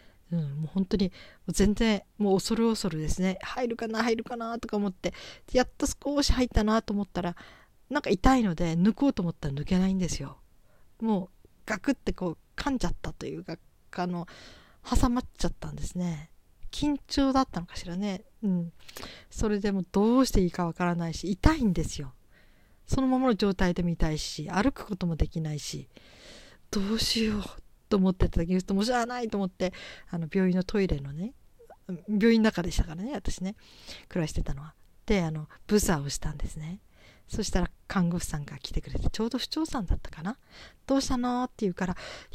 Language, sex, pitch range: Japanese, female, 170-235 Hz